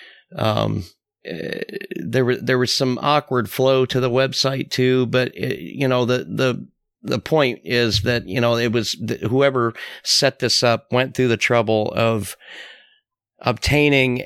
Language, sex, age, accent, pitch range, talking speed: English, male, 50-69, American, 105-125 Hz, 160 wpm